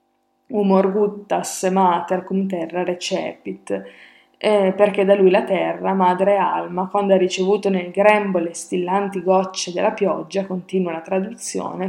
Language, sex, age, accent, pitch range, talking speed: Italian, female, 20-39, native, 185-200 Hz, 135 wpm